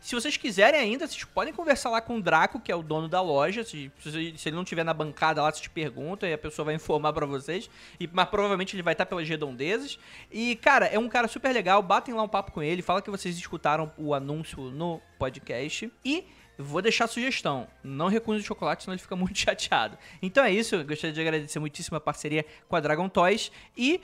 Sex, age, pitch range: male, 20-39, 170-245 Hz